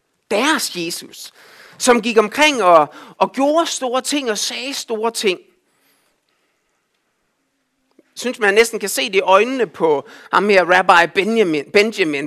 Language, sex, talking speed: Danish, male, 125 wpm